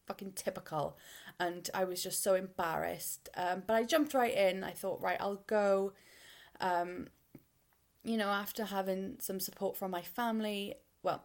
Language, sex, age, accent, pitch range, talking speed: English, female, 20-39, British, 175-205 Hz, 160 wpm